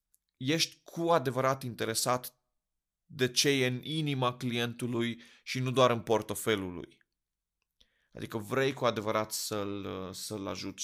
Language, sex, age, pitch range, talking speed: Romanian, male, 30-49, 110-135 Hz, 125 wpm